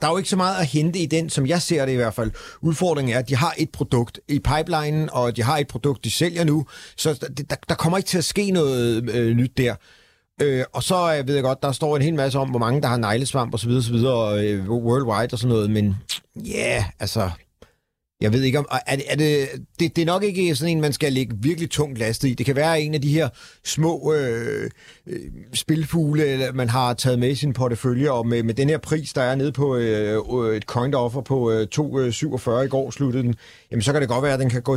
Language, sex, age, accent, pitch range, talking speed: Danish, male, 40-59, native, 120-150 Hz, 245 wpm